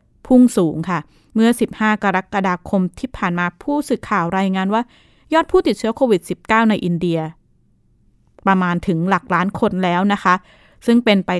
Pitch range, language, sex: 180-220 Hz, Thai, female